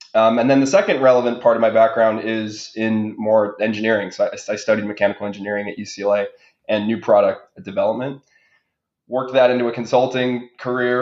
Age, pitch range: 20-39, 105-120 Hz